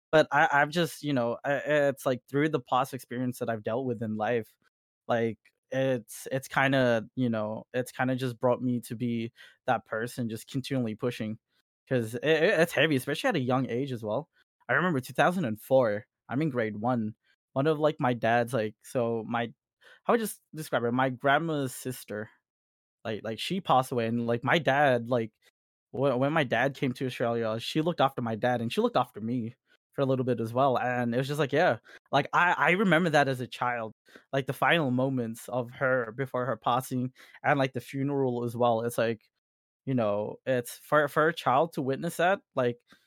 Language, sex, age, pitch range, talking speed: English, male, 20-39, 120-145 Hz, 210 wpm